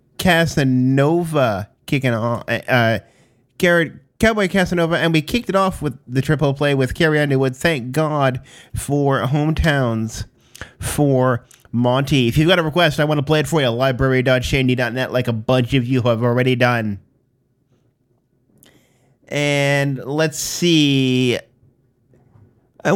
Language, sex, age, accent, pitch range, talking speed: English, male, 30-49, American, 125-160 Hz, 130 wpm